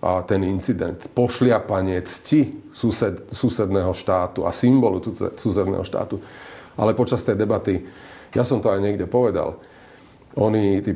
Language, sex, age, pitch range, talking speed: Slovak, male, 40-59, 100-120 Hz, 130 wpm